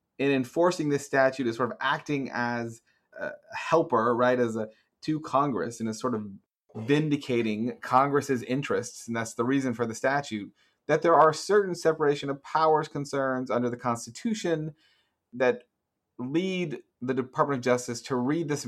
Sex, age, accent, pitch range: male, 30-49, American, 115-145 Hz